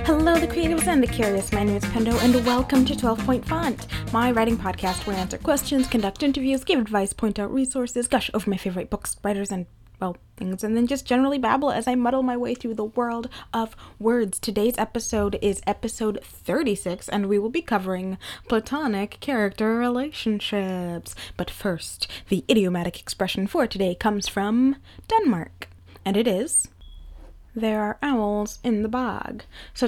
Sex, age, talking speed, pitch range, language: female, 20-39, 175 wpm, 195-245 Hz, English